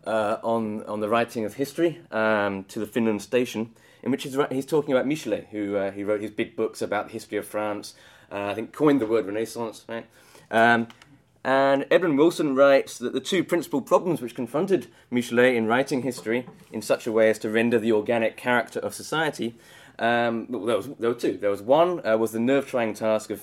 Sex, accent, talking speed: male, British, 215 wpm